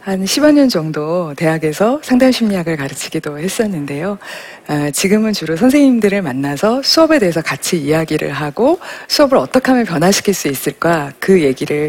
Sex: female